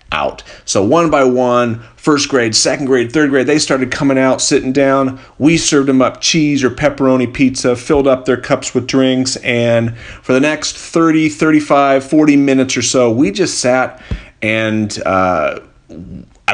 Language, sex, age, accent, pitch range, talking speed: English, male, 40-59, American, 115-145 Hz, 165 wpm